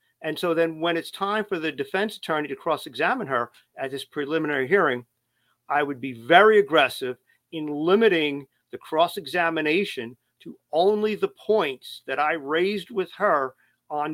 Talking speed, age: 155 wpm, 50-69